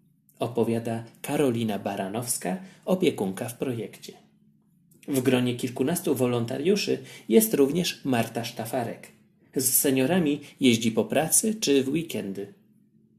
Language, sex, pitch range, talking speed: Polish, male, 115-175 Hz, 100 wpm